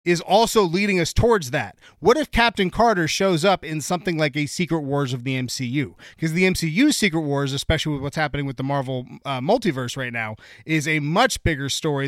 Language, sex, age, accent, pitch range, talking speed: English, male, 30-49, American, 140-195 Hz, 210 wpm